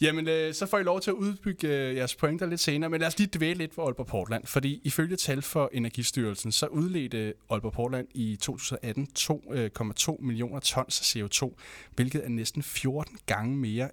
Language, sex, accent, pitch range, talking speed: Danish, male, native, 115-155 Hz, 170 wpm